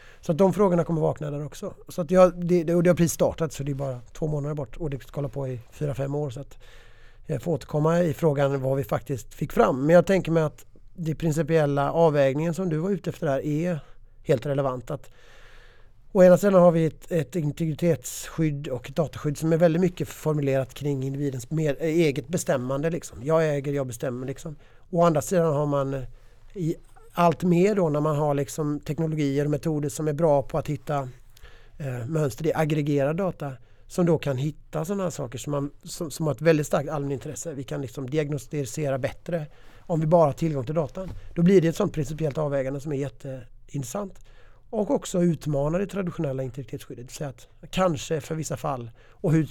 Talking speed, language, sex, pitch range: 200 wpm, Swedish, male, 135-165 Hz